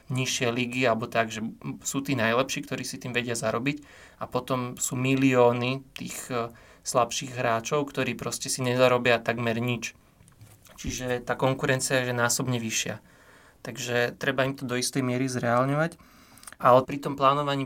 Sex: male